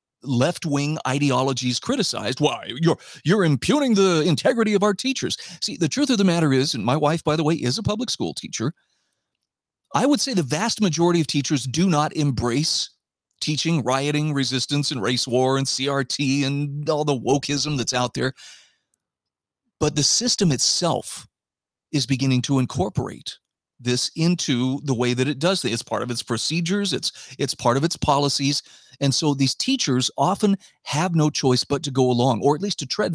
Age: 40-59